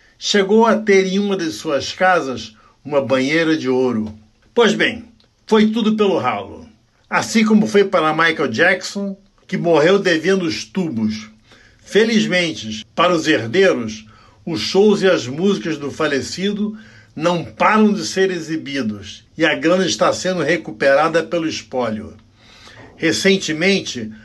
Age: 60-79